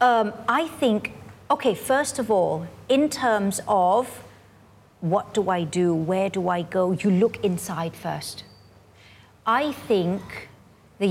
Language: Thai